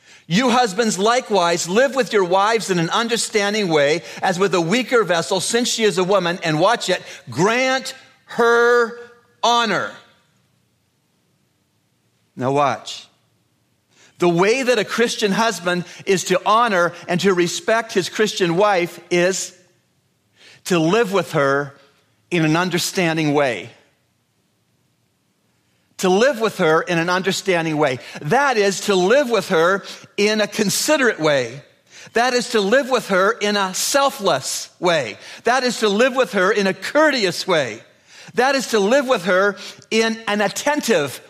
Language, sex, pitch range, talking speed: English, male, 165-225 Hz, 145 wpm